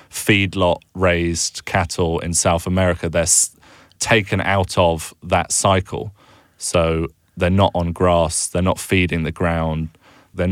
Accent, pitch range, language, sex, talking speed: British, 85-95 Hz, English, male, 130 wpm